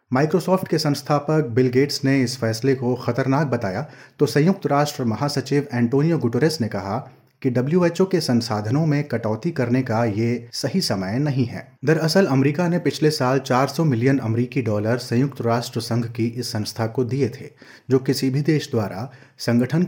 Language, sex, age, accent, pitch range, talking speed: Hindi, male, 30-49, native, 115-145 Hz, 170 wpm